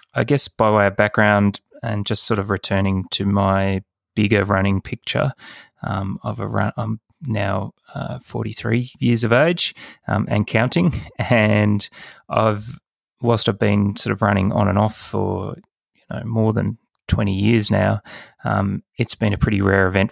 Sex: male